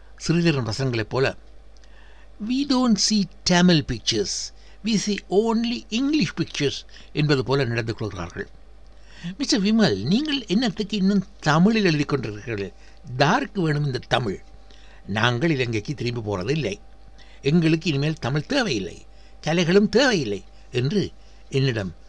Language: Tamil